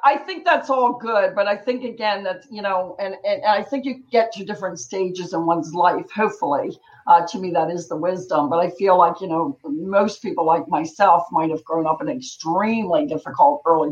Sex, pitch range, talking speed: female, 180-250 Hz, 215 wpm